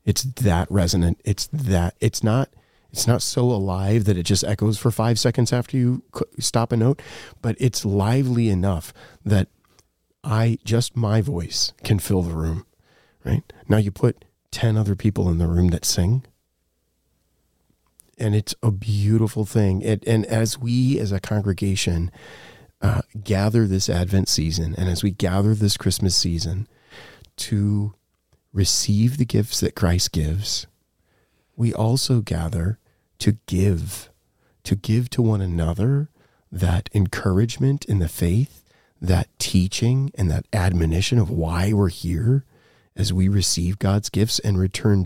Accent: American